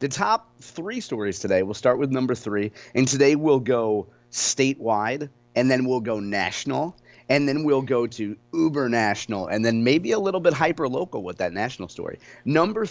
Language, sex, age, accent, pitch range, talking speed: English, male, 30-49, American, 105-130 Hz, 175 wpm